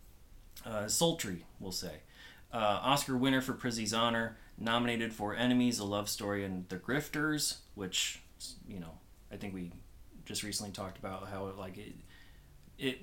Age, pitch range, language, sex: 30-49, 95-125 Hz, English, male